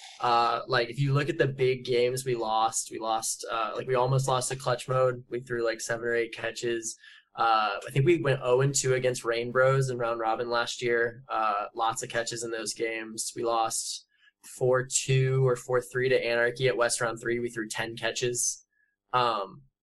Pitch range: 115-130 Hz